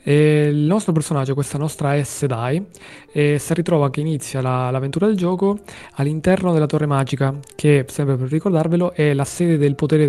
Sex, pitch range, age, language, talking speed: male, 130-150 Hz, 20-39, Italian, 185 wpm